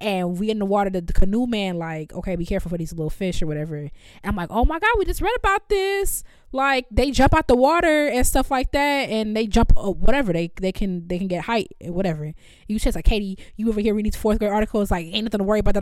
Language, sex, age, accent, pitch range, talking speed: English, female, 20-39, American, 180-265 Hz, 275 wpm